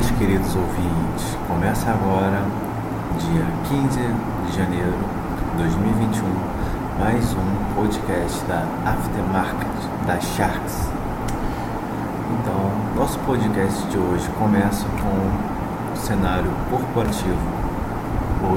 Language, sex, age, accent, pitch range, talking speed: Portuguese, male, 40-59, Brazilian, 95-110 Hz, 90 wpm